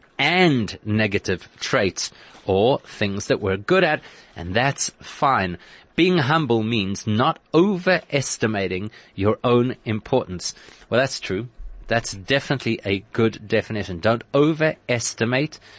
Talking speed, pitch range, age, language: 115 wpm, 105-145 Hz, 30-49, English